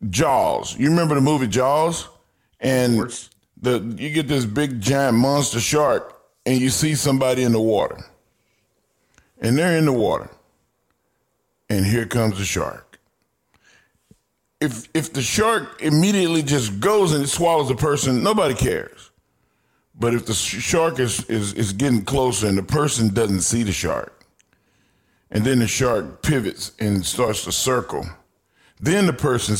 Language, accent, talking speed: English, American, 150 wpm